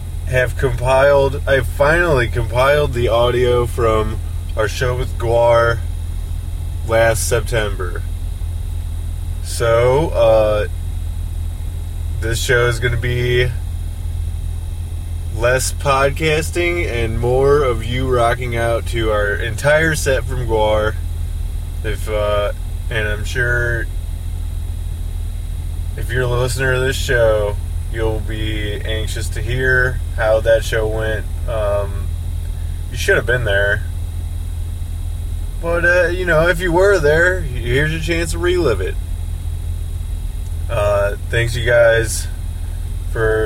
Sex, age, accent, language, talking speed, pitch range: male, 20-39, American, English, 110 wpm, 85-115 Hz